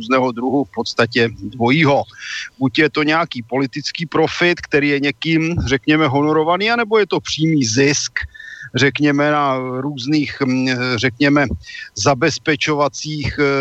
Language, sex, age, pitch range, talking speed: Slovak, male, 40-59, 130-150 Hz, 115 wpm